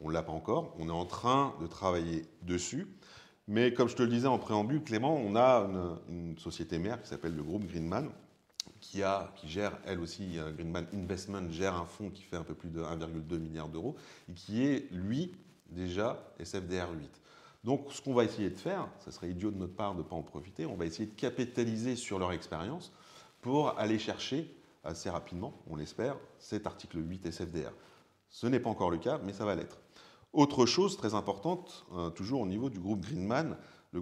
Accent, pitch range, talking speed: French, 85-110 Hz, 205 wpm